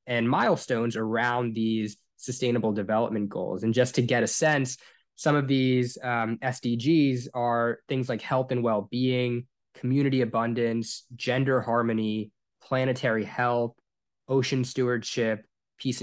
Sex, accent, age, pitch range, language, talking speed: male, American, 20-39, 115-135 Hz, English, 125 wpm